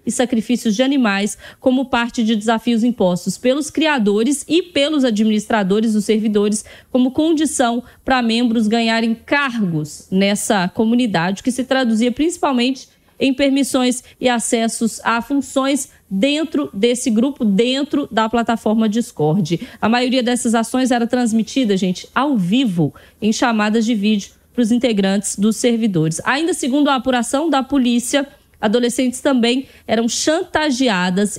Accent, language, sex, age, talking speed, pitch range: Brazilian, Portuguese, female, 20-39, 130 wpm, 220-260 Hz